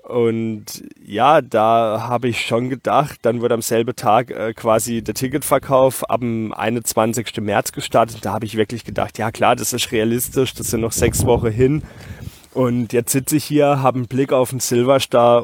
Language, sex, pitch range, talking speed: German, male, 110-125 Hz, 185 wpm